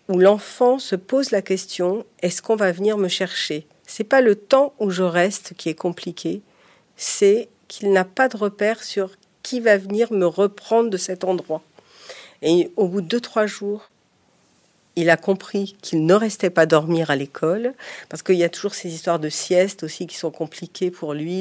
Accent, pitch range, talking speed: French, 160-200 Hz, 195 wpm